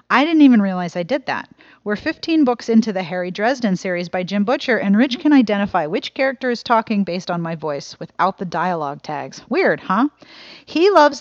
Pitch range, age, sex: 185-250 Hz, 40-59, female